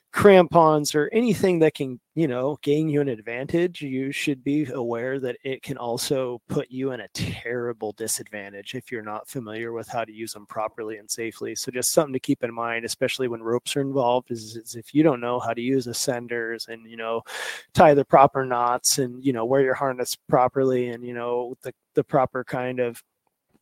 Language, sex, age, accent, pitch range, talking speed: English, male, 30-49, American, 115-135 Hz, 205 wpm